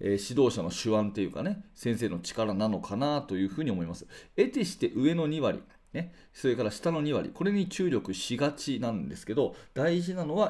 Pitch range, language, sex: 110-165 Hz, Japanese, male